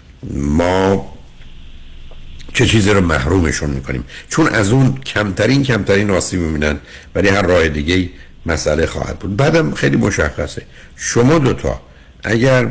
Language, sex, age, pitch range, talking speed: Persian, male, 60-79, 70-95 Hz, 125 wpm